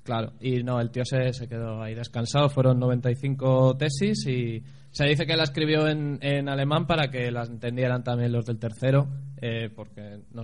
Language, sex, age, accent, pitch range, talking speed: Spanish, male, 20-39, Spanish, 120-150 Hz, 190 wpm